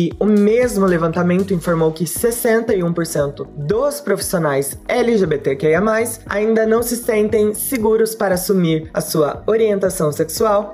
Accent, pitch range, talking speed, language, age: Brazilian, 170-225 Hz, 110 wpm, Portuguese, 20-39